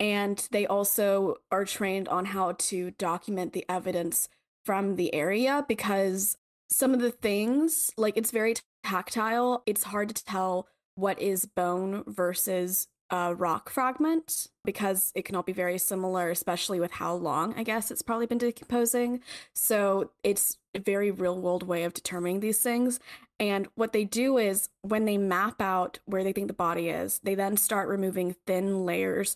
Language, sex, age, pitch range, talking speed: English, female, 20-39, 190-235 Hz, 170 wpm